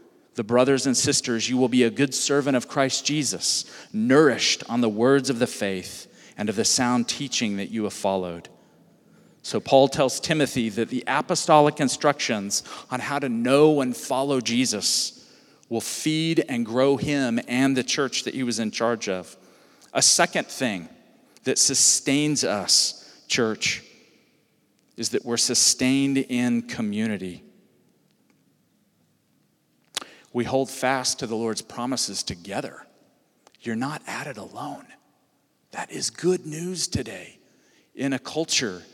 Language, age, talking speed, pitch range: English, 40-59, 140 wpm, 110-140 Hz